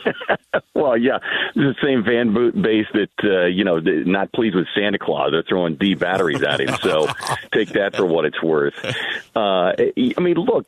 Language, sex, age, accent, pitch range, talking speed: English, male, 50-69, American, 85-110 Hz, 185 wpm